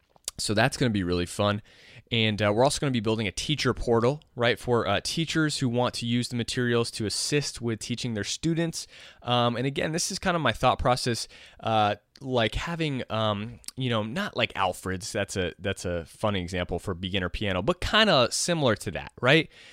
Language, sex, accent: English, male, American